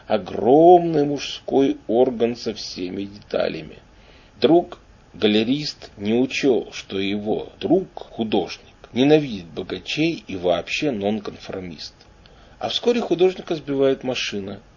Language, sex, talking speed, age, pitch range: Russian, male, 90 wpm, 40-59, 110-155 Hz